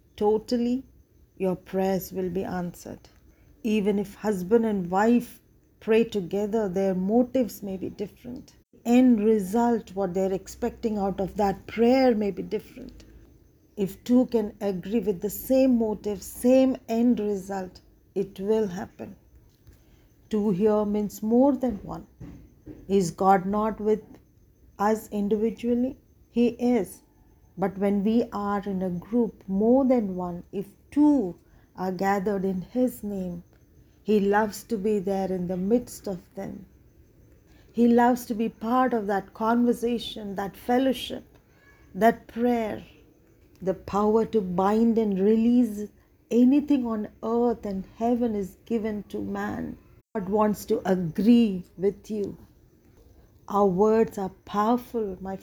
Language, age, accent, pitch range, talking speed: English, 40-59, Indian, 195-235 Hz, 135 wpm